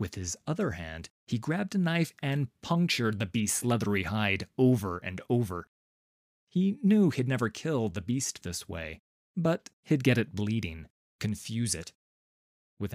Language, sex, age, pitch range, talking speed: English, male, 30-49, 90-130 Hz, 160 wpm